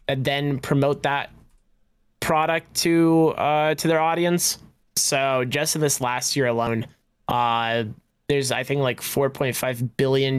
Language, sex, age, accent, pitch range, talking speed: English, male, 20-39, American, 120-145 Hz, 140 wpm